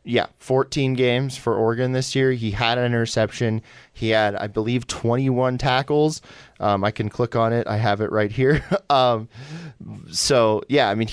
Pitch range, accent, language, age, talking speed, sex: 110-130 Hz, American, English, 20-39, 180 wpm, male